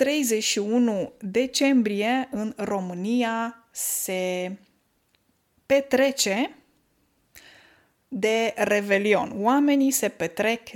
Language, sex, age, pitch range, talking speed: Romanian, female, 20-39, 195-245 Hz, 60 wpm